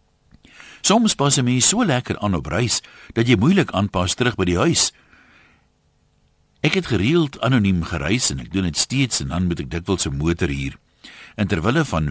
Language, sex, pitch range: Dutch, male, 80-130 Hz